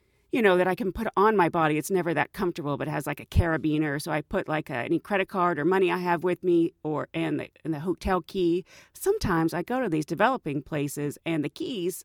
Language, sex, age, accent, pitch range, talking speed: English, female, 40-59, American, 165-265 Hz, 240 wpm